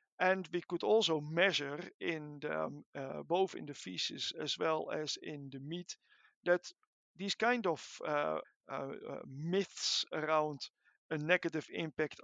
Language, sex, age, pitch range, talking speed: English, male, 50-69, 155-195 Hz, 140 wpm